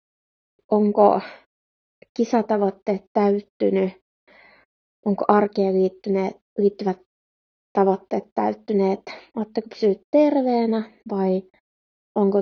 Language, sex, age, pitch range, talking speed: Finnish, female, 20-39, 195-230 Hz, 65 wpm